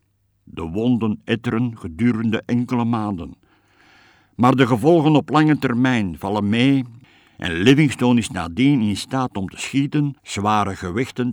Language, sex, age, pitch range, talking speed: Dutch, male, 60-79, 100-130 Hz, 130 wpm